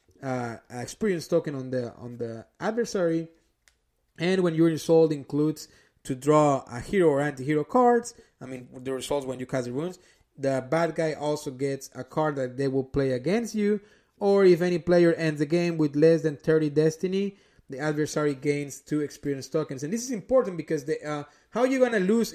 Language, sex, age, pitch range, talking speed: English, male, 30-49, 145-185 Hz, 195 wpm